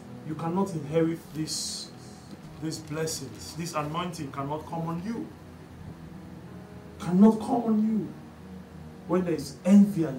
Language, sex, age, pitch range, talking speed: English, male, 50-69, 145-200 Hz, 125 wpm